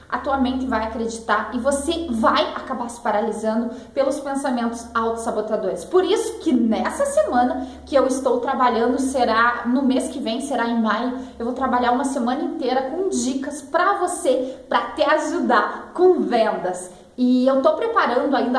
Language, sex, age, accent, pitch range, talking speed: Portuguese, female, 20-39, Brazilian, 235-290 Hz, 170 wpm